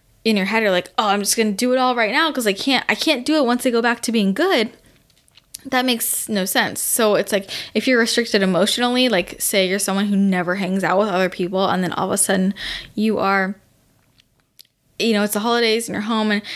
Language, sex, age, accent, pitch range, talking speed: English, female, 10-29, American, 190-235 Hz, 245 wpm